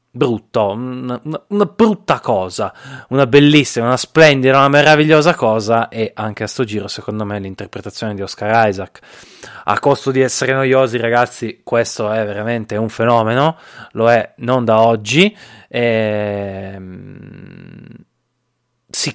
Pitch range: 110-135 Hz